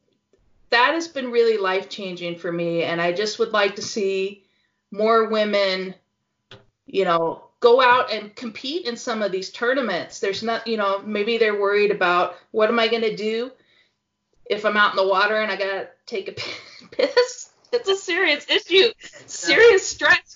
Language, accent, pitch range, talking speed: English, American, 190-260 Hz, 175 wpm